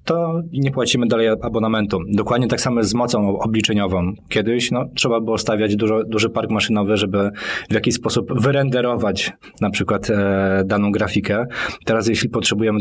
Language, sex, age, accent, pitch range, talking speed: Polish, male, 20-39, native, 105-120 Hz, 155 wpm